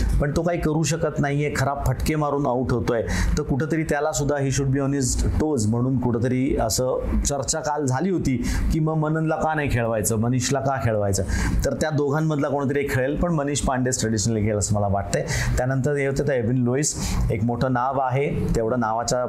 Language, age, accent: Marathi, 30-49, native